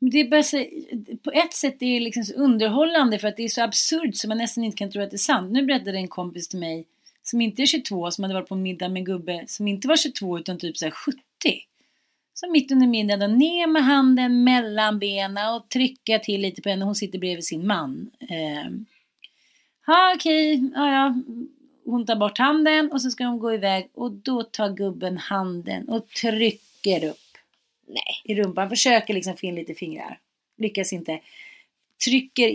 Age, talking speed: 30-49, 195 wpm